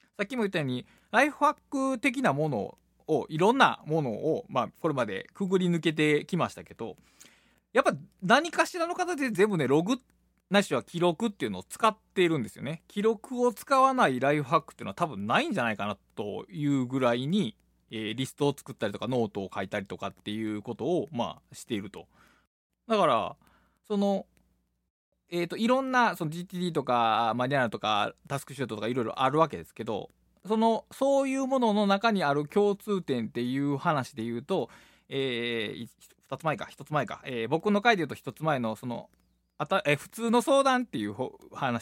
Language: Japanese